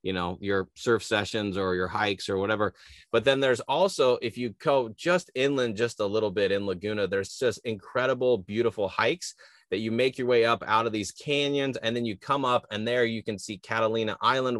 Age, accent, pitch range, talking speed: 20-39, American, 100-130 Hz, 210 wpm